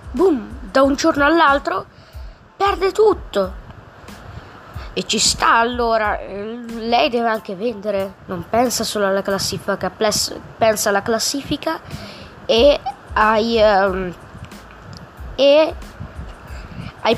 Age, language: 20-39, Italian